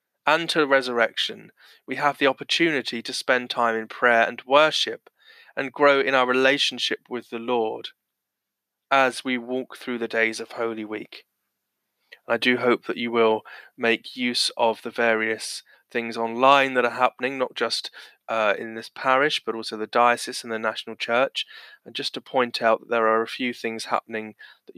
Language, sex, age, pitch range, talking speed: English, male, 20-39, 115-130 Hz, 175 wpm